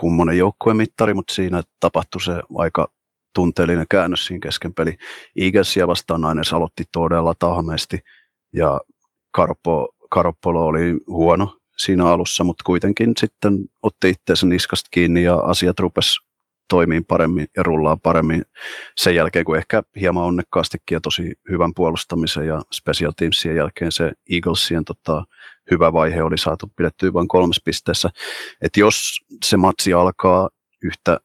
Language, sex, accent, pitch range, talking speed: Finnish, male, native, 80-90 Hz, 135 wpm